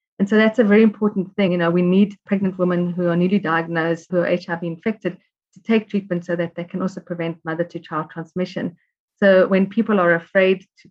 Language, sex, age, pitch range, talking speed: English, female, 30-49, 170-190 Hz, 210 wpm